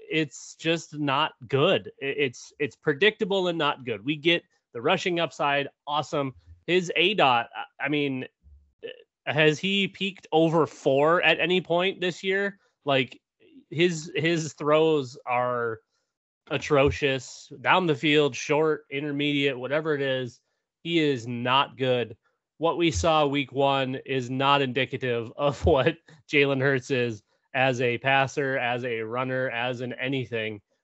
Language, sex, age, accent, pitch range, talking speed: English, male, 30-49, American, 125-155 Hz, 140 wpm